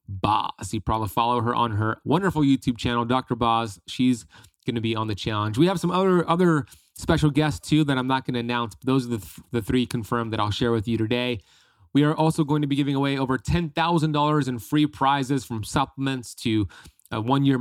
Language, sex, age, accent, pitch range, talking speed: English, male, 30-49, American, 115-145 Hz, 220 wpm